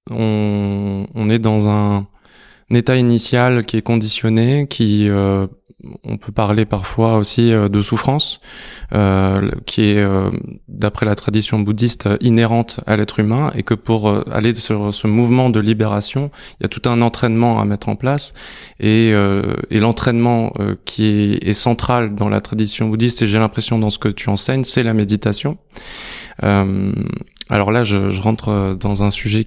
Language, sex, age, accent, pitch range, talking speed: French, male, 20-39, French, 105-120 Hz, 175 wpm